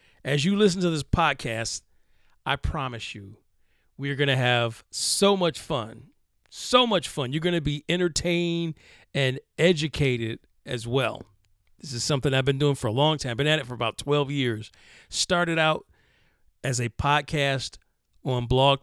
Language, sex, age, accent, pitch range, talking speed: English, male, 40-59, American, 110-145 Hz, 170 wpm